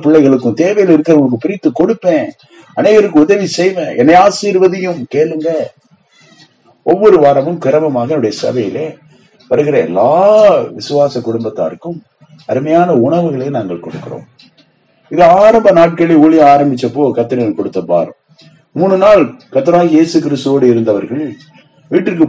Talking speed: 45 wpm